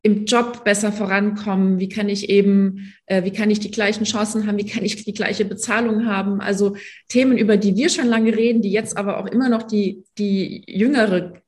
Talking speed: 210 wpm